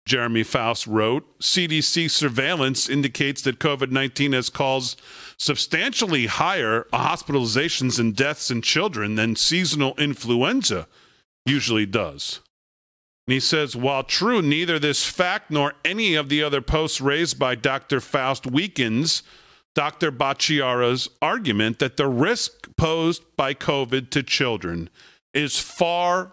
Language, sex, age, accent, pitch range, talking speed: English, male, 40-59, American, 130-160 Hz, 125 wpm